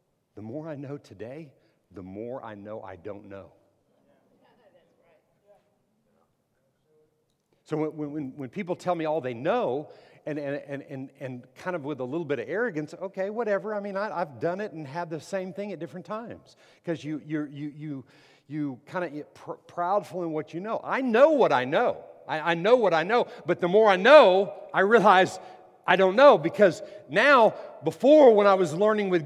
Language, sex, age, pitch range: English, male, 50-69, 135-190 Hz